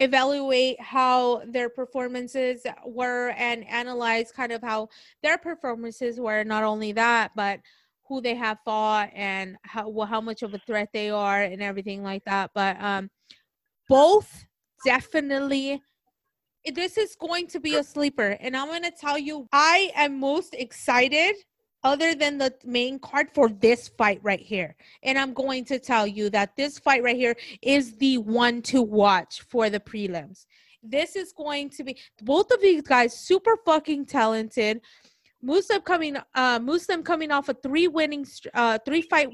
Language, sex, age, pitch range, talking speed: English, female, 30-49, 230-305 Hz, 165 wpm